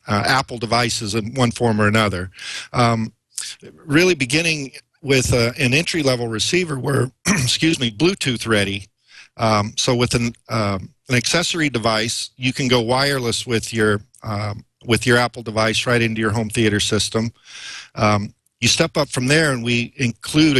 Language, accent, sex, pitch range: English, American, male, 110-130 Hz